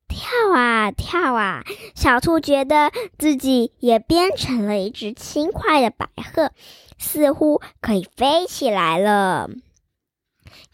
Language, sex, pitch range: Chinese, male, 225-310 Hz